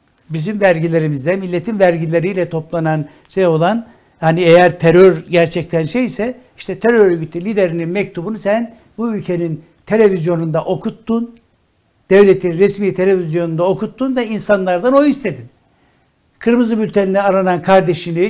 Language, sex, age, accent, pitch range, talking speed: Turkish, male, 60-79, native, 175-215 Hz, 110 wpm